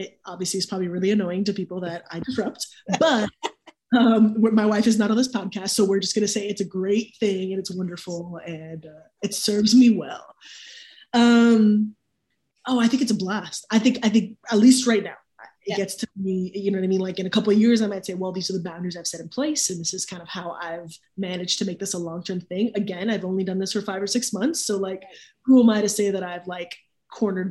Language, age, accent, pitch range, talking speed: English, 20-39, American, 185-240 Hz, 255 wpm